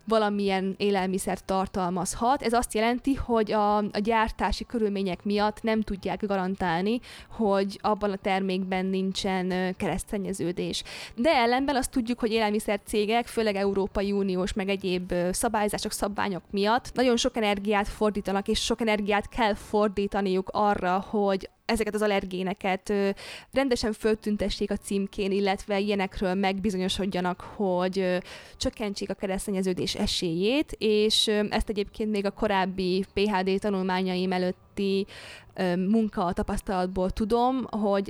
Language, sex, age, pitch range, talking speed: Hungarian, female, 20-39, 190-215 Hz, 115 wpm